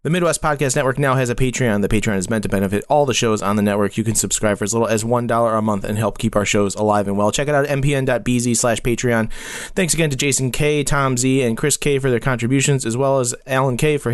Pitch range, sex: 110-135 Hz, male